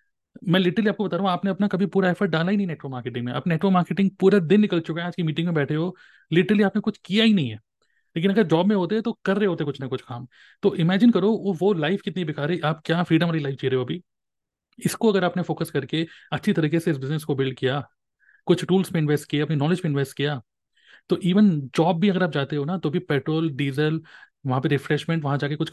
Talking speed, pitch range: 255 wpm, 145-180 Hz